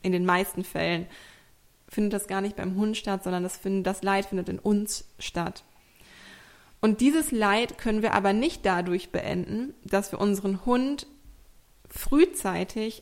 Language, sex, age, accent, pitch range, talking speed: German, female, 20-39, German, 195-225 Hz, 150 wpm